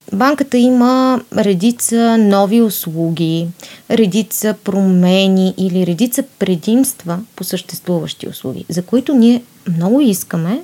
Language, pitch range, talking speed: Bulgarian, 180-230 Hz, 100 wpm